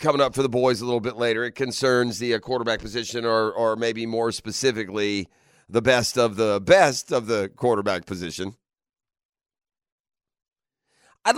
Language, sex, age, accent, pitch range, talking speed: English, male, 40-59, American, 125-180 Hz, 160 wpm